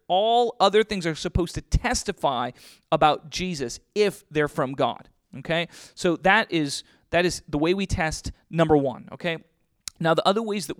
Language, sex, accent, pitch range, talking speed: English, male, American, 145-185 Hz, 170 wpm